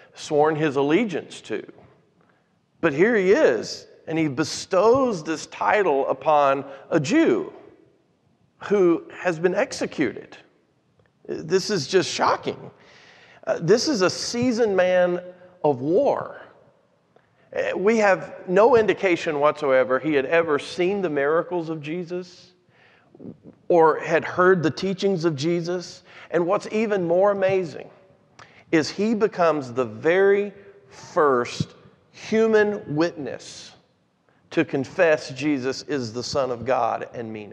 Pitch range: 135-185 Hz